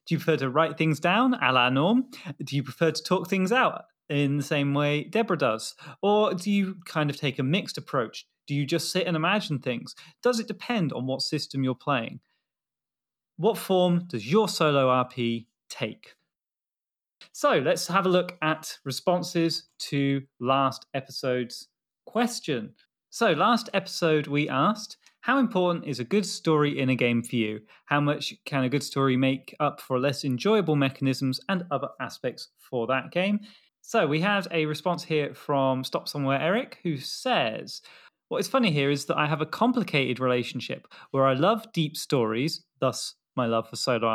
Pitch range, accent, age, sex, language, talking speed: 130-180 Hz, British, 30-49, male, English, 180 wpm